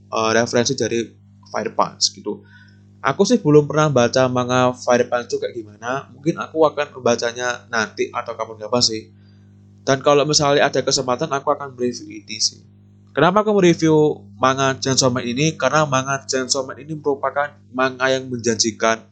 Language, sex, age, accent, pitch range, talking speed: Indonesian, male, 20-39, native, 105-140 Hz, 155 wpm